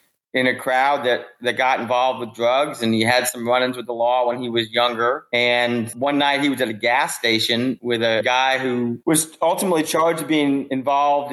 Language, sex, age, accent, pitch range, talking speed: English, male, 30-49, American, 120-135 Hz, 205 wpm